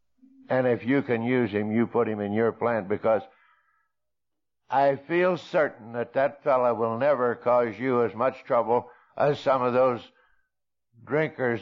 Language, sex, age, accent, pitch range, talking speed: English, male, 60-79, American, 105-125 Hz, 160 wpm